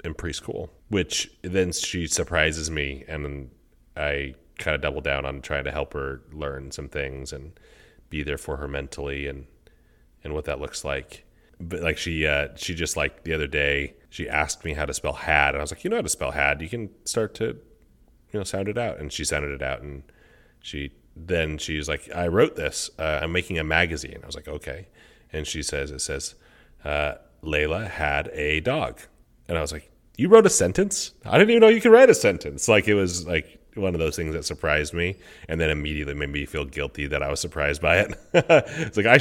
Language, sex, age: English, male, 30-49